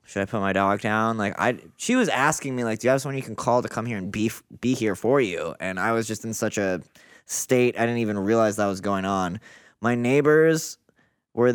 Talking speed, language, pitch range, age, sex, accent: 255 wpm, English, 100-125 Hz, 20-39, male, American